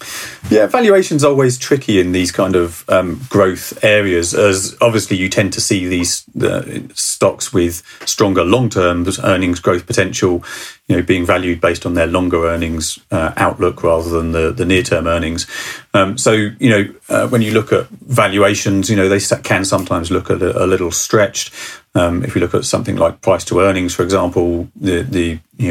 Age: 30-49